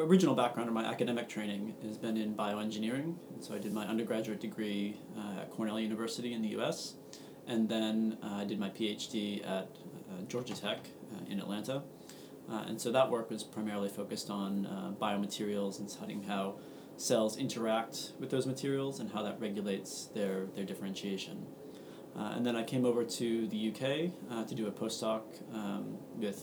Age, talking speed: 30-49, 185 wpm